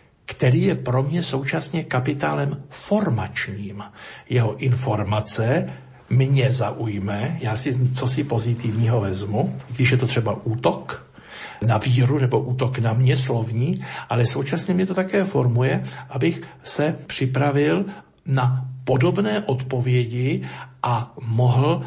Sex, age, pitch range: male, 60-79, 115-135 Hz